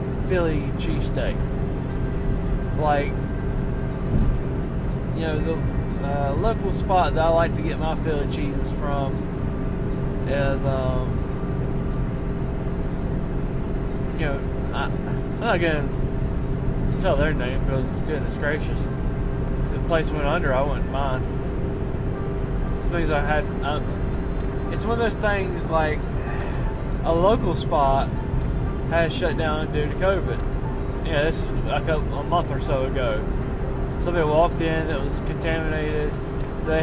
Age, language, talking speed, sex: 20-39, English, 115 wpm, male